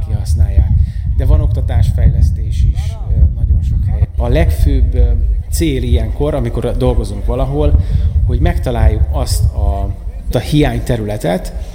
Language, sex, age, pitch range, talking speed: Hungarian, male, 30-49, 80-95 Hz, 105 wpm